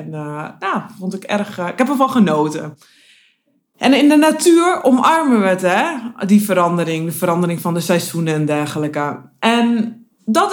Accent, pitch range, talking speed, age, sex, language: Dutch, 160-230 Hz, 175 wpm, 20-39, female, Dutch